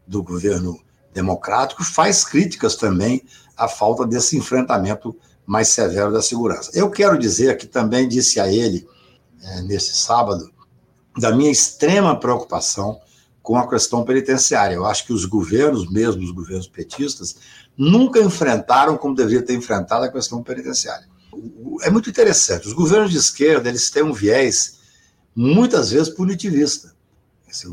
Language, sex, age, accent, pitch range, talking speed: Portuguese, male, 60-79, Brazilian, 95-135 Hz, 145 wpm